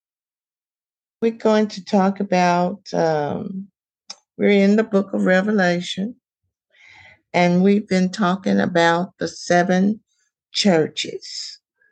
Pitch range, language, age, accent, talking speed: 175-215 Hz, English, 60-79, American, 100 wpm